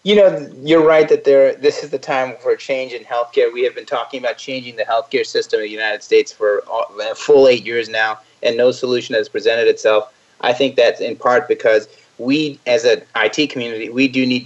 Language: English